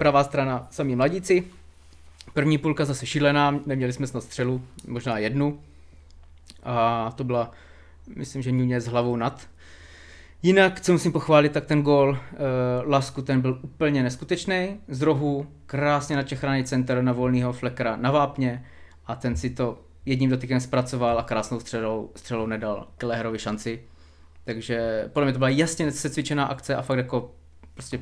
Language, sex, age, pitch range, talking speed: Czech, male, 20-39, 115-150 Hz, 150 wpm